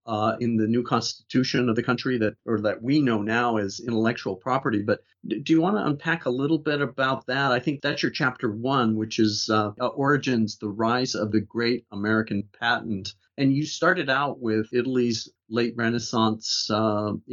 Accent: American